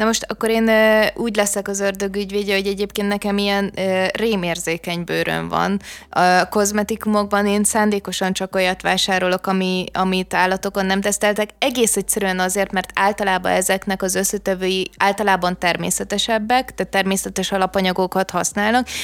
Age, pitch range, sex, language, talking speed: 20-39, 185-210 Hz, female, Hungarian, 130 wpm